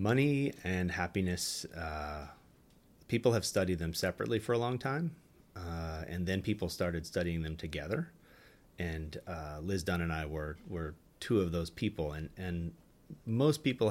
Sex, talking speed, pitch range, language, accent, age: male, 160 wpm, 85-110 Hz, English, American, 30-49